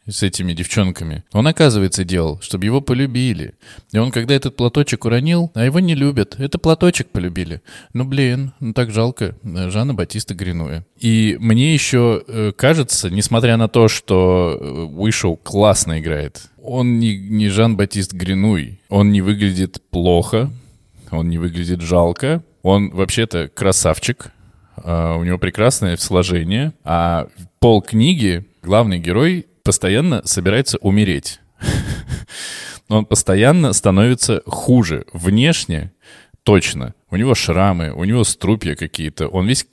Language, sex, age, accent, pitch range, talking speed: Russian, male, 20-39, native, 90-115 Hz, 130 wpm